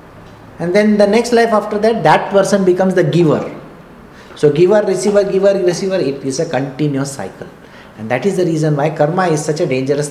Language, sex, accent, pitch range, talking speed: English, male, Indian, 145-200 Hz, 195 wpm